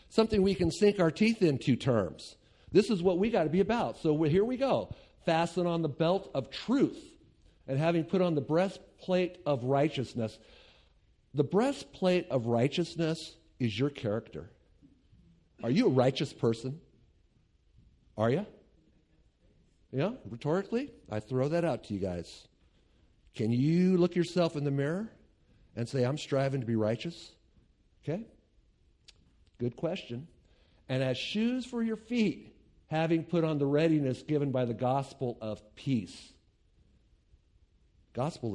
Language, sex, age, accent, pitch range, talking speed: English, male, 50-69, American, 100-160 Hz, 145 wpm